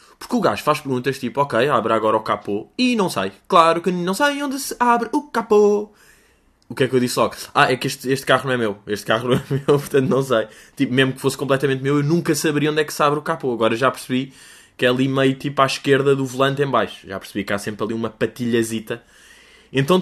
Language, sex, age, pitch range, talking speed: Portuguese, male, 20-39, 130-185 Hz, 260 wpm